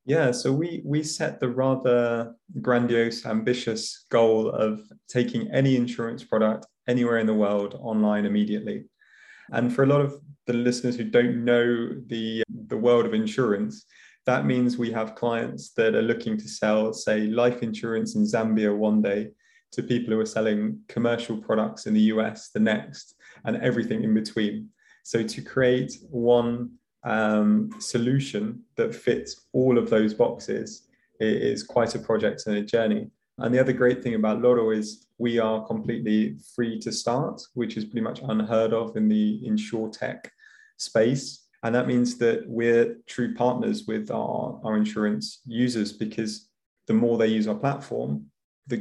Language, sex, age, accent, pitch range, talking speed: English, male, 20-39, British, 110-125 Hz, 165 wpm